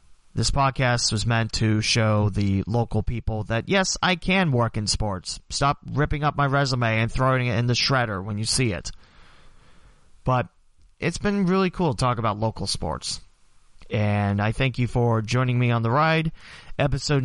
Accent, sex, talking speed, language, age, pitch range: American, male, 180 wpm, English, 30-49, 105-140 Hz